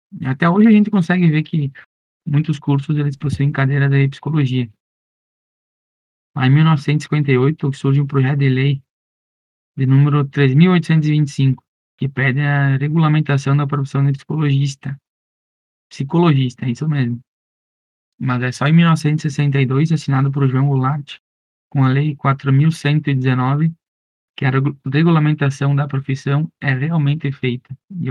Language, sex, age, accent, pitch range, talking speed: Portuguese, male, 20-39, Brazilian, 135-150 Hz, 125 wpm